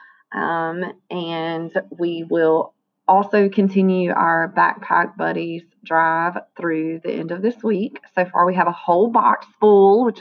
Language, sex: English, female